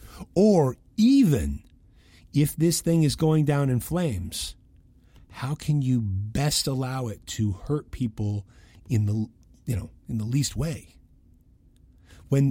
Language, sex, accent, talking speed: English, male, American, 135 wpm